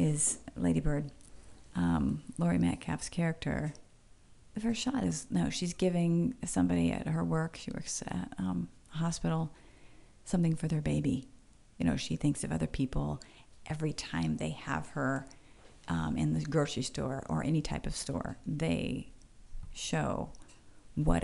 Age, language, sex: 40-59, English, female